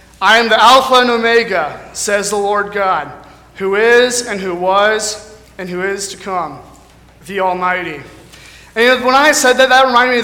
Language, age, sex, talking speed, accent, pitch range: English, 30-49, male, 180 wpm, American, 185-225 Hz